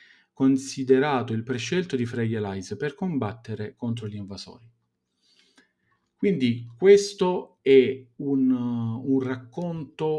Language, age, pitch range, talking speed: Italian, 40-59, 115-140 Hz, 95 wpm